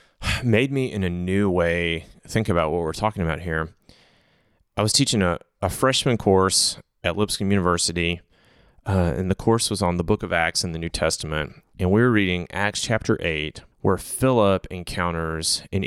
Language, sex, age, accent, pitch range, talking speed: English, male, 30-49, American, 85-110 Hz, 180 wpm